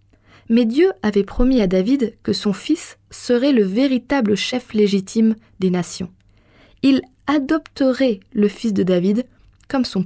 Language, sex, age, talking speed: French, female, 20-39, 145 wpm